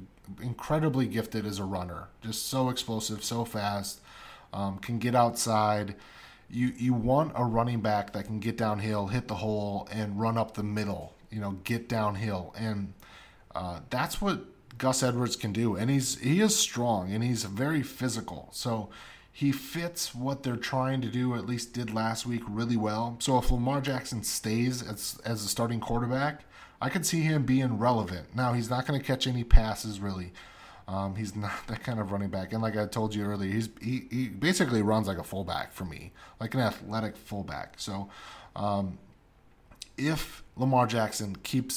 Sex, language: male, English